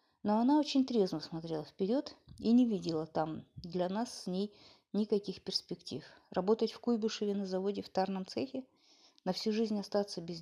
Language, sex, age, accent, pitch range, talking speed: Russian, female, 30-49, native, 175-230 Hz, 165 wpm